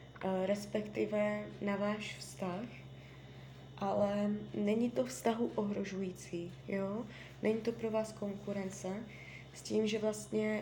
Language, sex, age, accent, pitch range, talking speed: Czech, female, 20-39, native, 180-220 Hz, 105 wpm